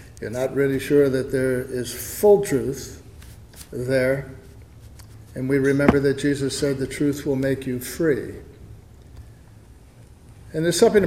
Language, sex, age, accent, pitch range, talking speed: English, male, 60-79, American, 115-145 Hz, 135 wpm